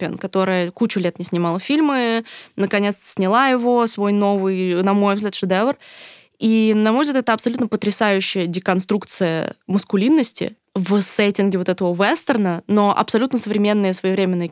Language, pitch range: Russian, 185-220 Hz